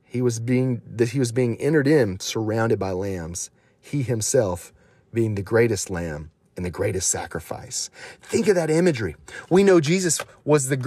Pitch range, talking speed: 125-175 Hz, 170 wpm